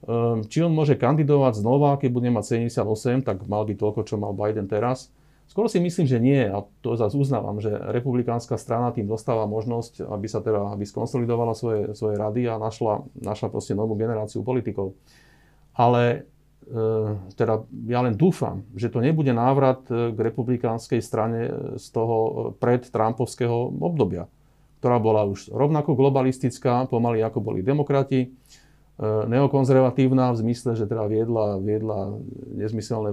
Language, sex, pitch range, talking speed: Slovak, male, 110-135 Hz, 145 wpm